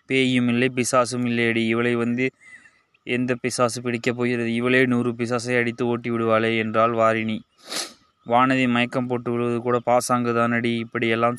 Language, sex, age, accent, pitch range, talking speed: Tamil, male, 20-39, native, 115-125 Hz, 130 wpm